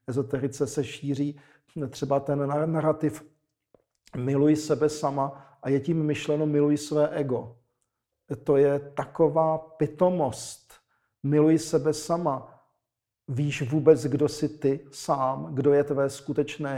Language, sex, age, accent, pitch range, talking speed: Czech, male, 40-59, native, 130-150 Hz, 120 wpm